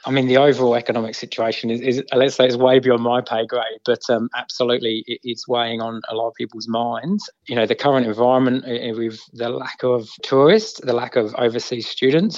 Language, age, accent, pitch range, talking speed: English, 20-39, British, 115-130 Hz, 205 wpm